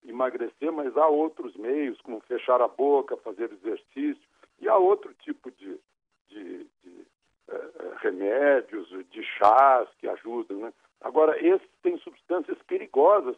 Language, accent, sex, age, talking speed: Portuguese, Brazilian, male, 60-79, 135 wpm